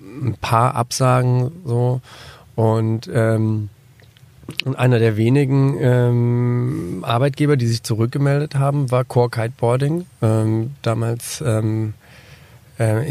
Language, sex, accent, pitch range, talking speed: German, male, German, 115-130 Hz, 100 wpm